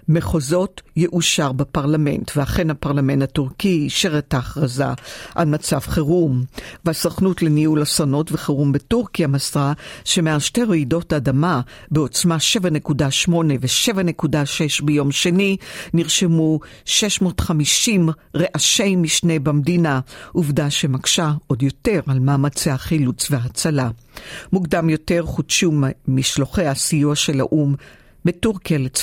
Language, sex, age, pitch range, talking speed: Hebrew, female, 50-69, 140-170 Hz, 105 wpm